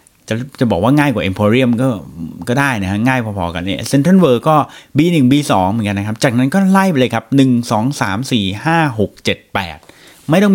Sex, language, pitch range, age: male, Thai, 95-130 Hz, 30-49